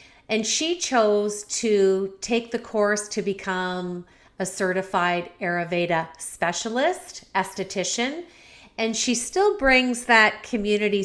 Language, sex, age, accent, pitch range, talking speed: English, female, 40-59, American, 180-215 Hz, 110 wpm